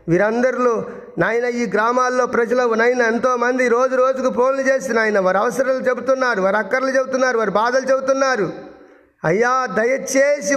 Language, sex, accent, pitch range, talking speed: Telugu, male, native, 200-235 Hz, 135 wpm